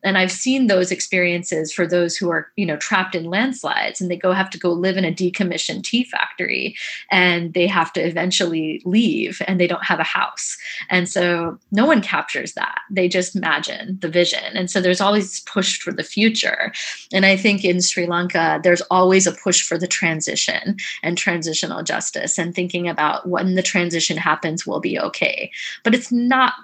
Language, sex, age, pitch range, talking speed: English, female, 20-39, 175-200 Hz, 195 wpm